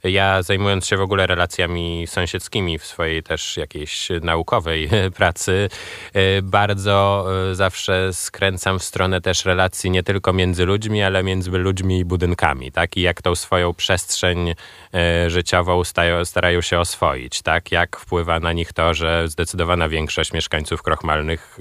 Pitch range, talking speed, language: 80-95 Hz, 140 wpm, Polish